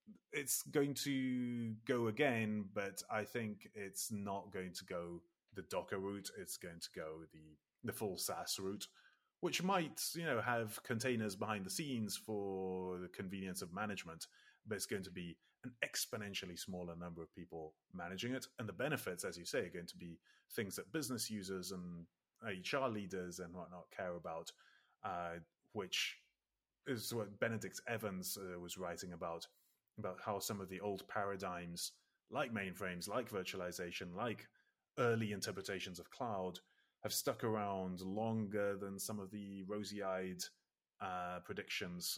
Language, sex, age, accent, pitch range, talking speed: English, male, 30-49, British, 90-115 Hz, 155 wpm